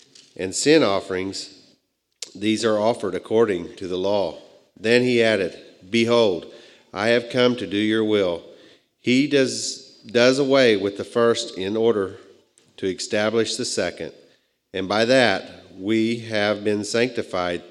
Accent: American